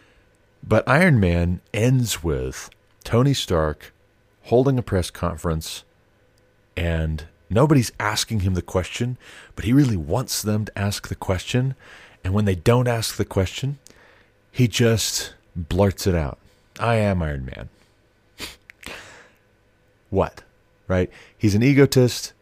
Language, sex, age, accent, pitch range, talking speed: English, male, 30-49, American, 85-105 Hz, 125 wpm